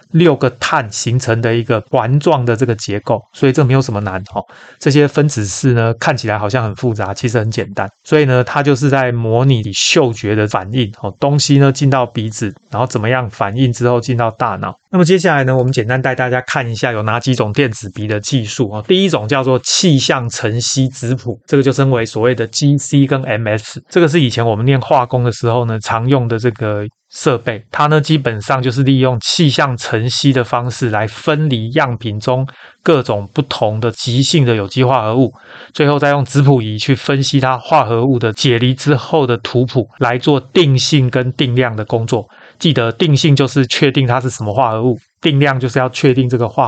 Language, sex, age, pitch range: Chinese, male, 30-49, 115-140 Hz